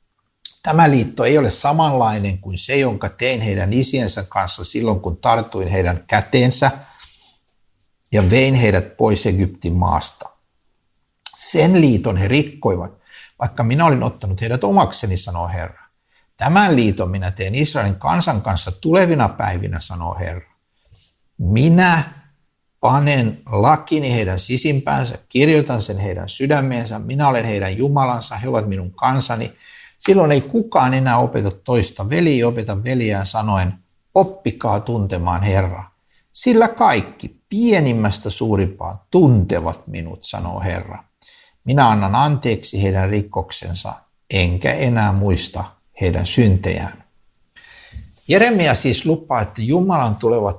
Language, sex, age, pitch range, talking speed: Finnish, male, 60-79, 95-135 Hz, 120 wpm